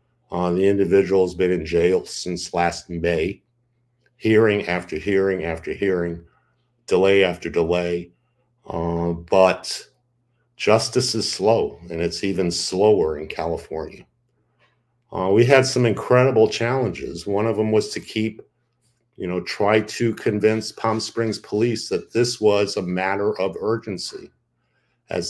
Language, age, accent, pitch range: English, 50-69, American, 90-120 Hz